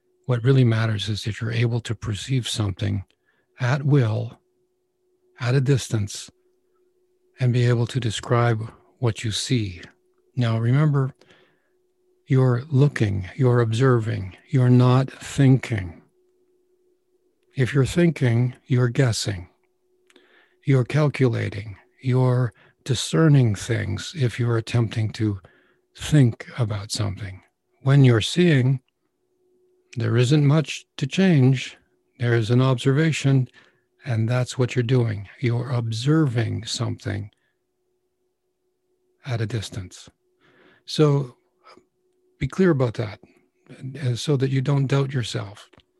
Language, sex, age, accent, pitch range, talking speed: English, male, 60-79, American, 115-155 Hz, 110 wpm